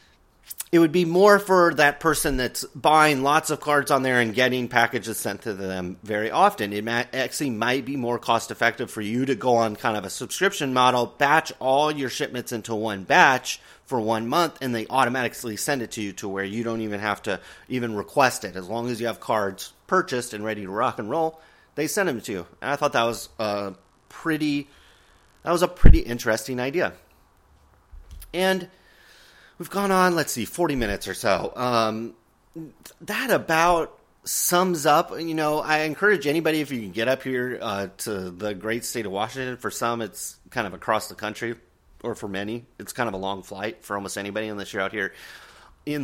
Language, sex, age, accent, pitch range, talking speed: English, male, 30-49, American, 105-145 Hz, 195 wpm